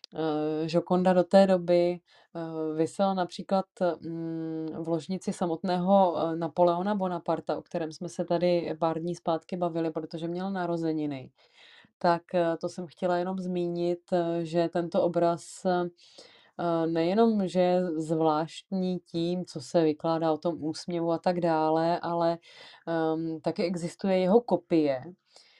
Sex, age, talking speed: female, 20-39, 120 wpm